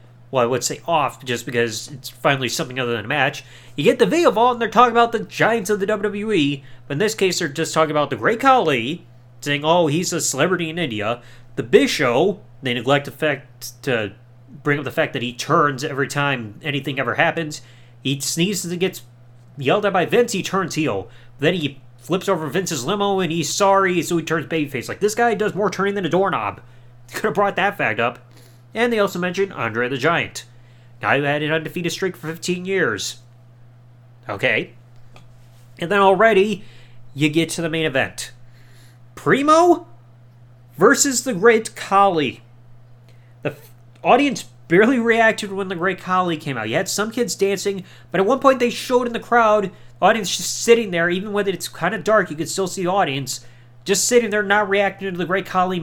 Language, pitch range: English, 120-195 Hz